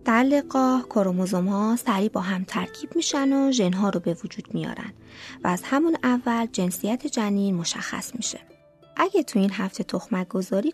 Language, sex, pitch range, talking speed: Persian, female, 200-285 Hz, 155 wpm